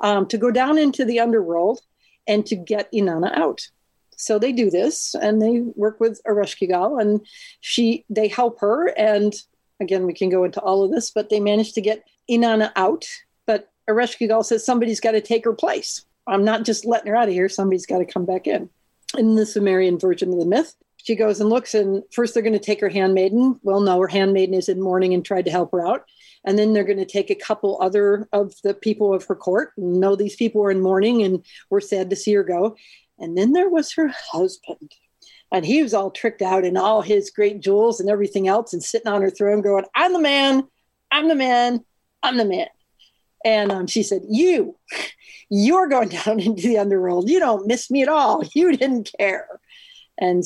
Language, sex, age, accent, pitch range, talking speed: English, female, 40-59, American, 195-235 Hz, 215 wpm